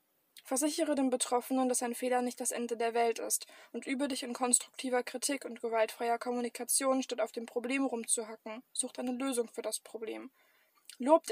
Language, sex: German, female